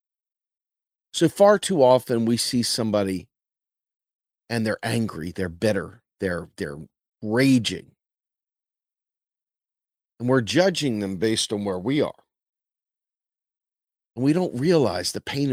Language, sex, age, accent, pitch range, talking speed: English, male, 40-59, American, 100-130 Hz, 115 wpm